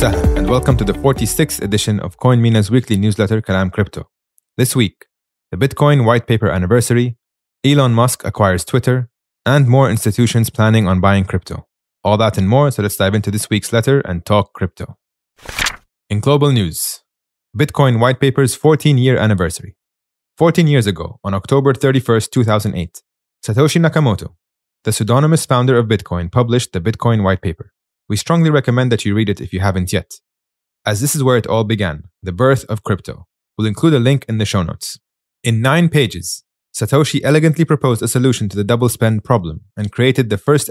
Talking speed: 175 wpm